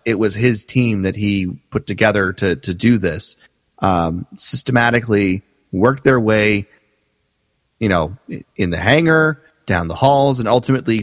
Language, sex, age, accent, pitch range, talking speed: English, male, 30-49, American, 100-130 Hz, 145 wpm